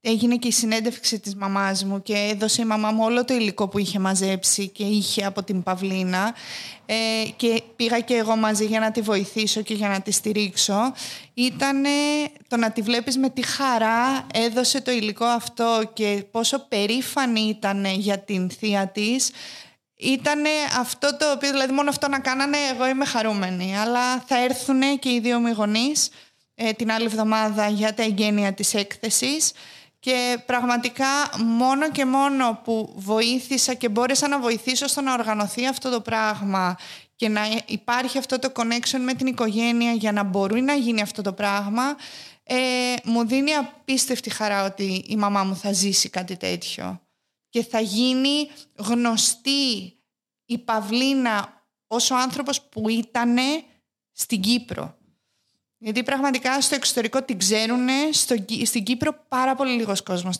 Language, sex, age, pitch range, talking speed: Greek, female, 20-39, 210-255 Hz, 155 wpm